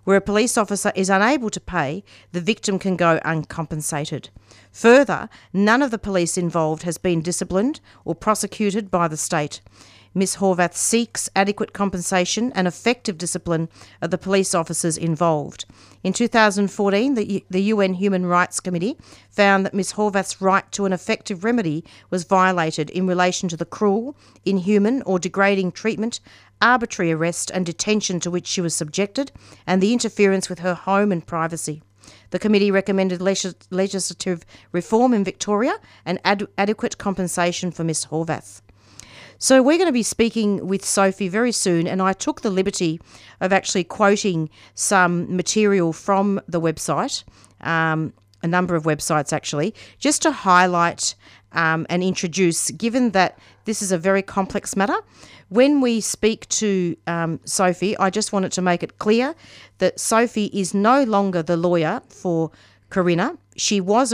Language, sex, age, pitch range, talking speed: English, female, 50-69, 170-205 Hz, 155 wpm